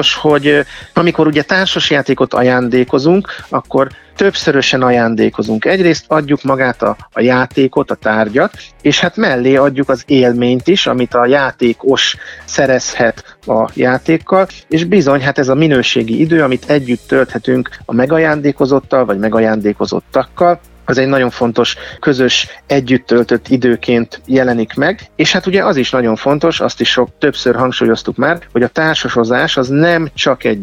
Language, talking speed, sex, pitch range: Hungarian, 140 wpm, male, 125-150 Hz